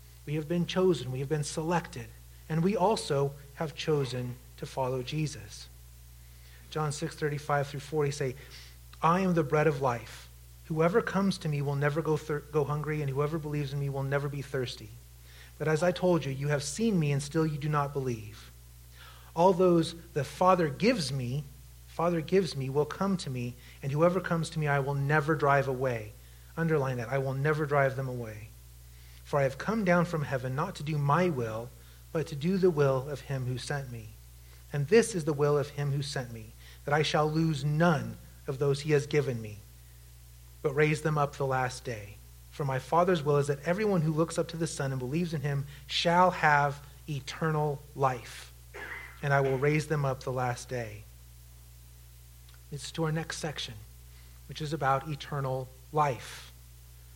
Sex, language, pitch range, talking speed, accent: male, English, 110-155 Hz, 195 wpm, American